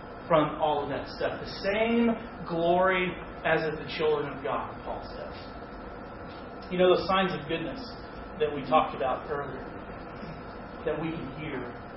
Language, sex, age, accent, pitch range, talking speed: English, male, 40-59, American, 140-170 Hz, 155 wpm